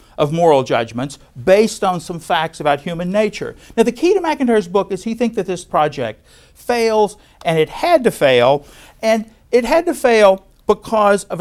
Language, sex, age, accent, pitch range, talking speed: English, male, 50-69, American, 145-210 Hz, 185 wpm